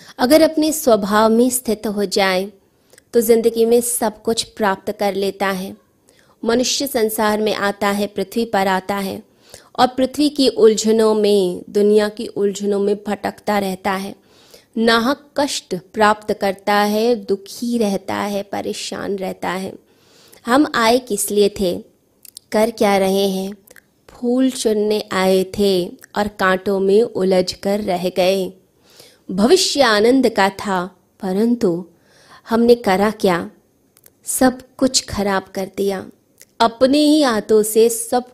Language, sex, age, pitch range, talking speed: Hindi, female, 20-39, 195-235 Hz, 135 wpm